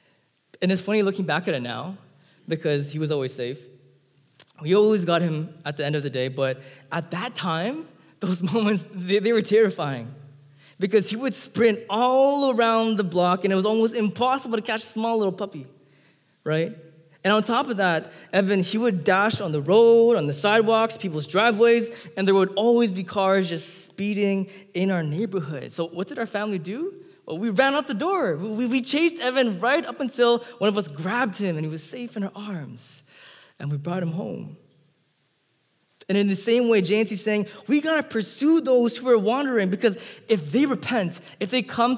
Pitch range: 160-235 Hz